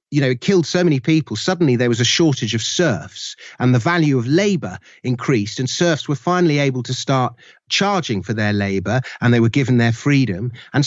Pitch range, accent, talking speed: 120-155 Hz, British, 210 wpm